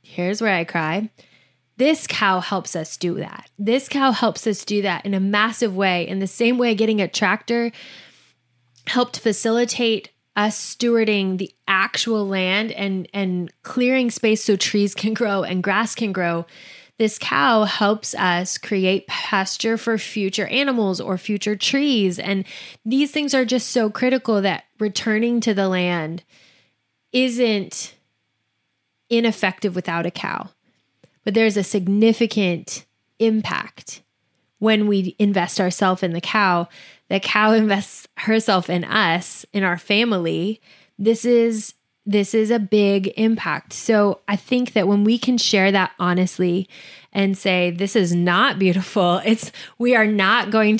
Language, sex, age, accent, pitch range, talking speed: English, female, 20-39, American, 185-225 Hz, 145 wpm